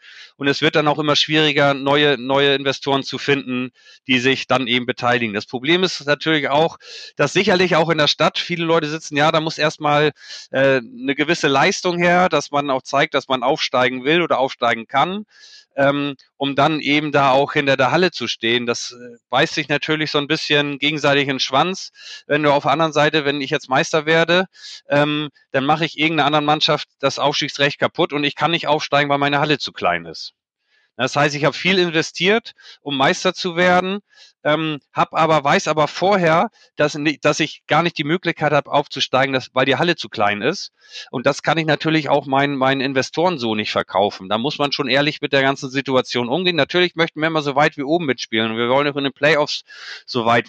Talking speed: 215 wpm